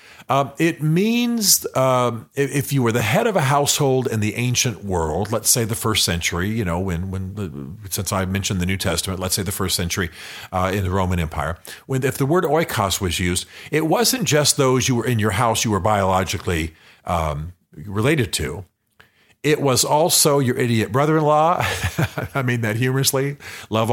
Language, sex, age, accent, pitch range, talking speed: English, male, 50-69, American, 100-140 Hz, 190 wpm